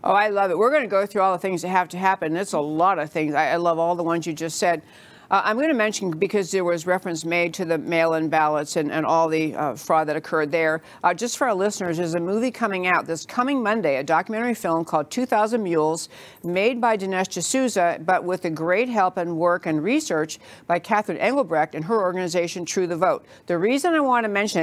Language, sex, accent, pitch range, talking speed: English, female, American, 170-225 Hz, 240 wpm